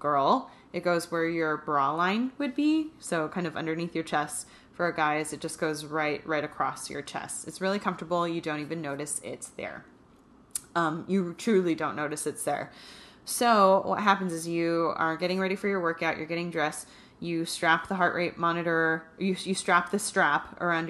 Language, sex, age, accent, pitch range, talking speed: English, female, 20-39, American, 160-190 Hz, 195 wpm